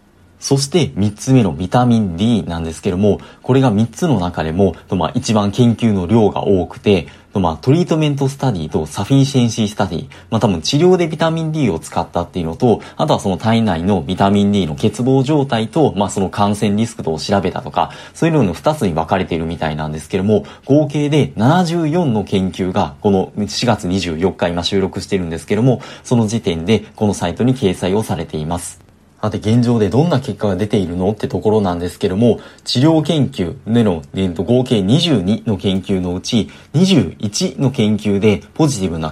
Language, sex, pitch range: Japanese, male, 95-130 Hz